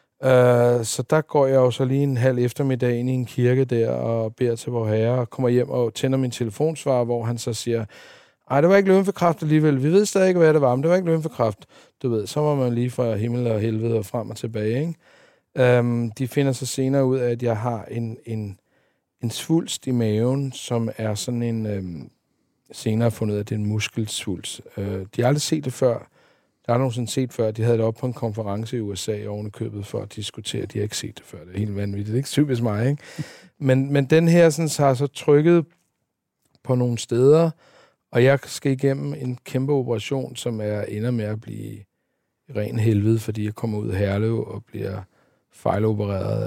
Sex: male